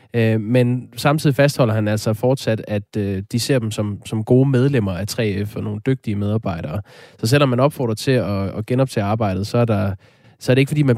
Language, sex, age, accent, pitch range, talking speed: Danish, male, 20-39, native, 110-135 Hz, 210 wpm